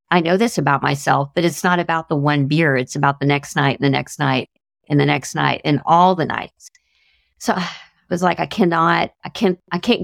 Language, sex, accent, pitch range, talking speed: English, female, American, 145-185 Hz, 235 wpm